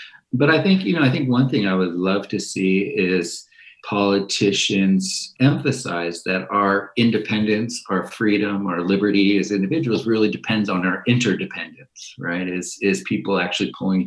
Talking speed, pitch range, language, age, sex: 160 wpm, 95-115 Hz, English, 40-59, male